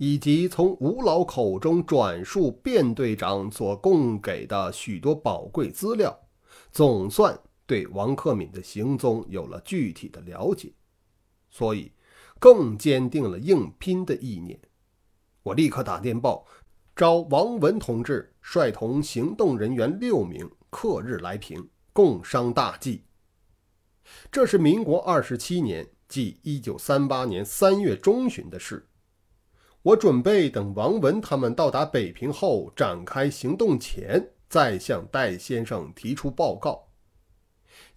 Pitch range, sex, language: 95-145 Hz, male, Chinese